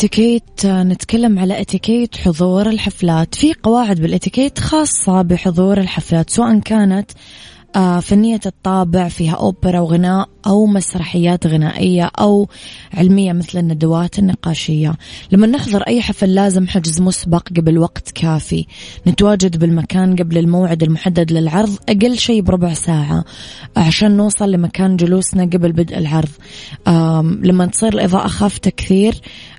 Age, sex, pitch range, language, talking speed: 20-39, female, 170-200 Hz, Arabic, 120 wpm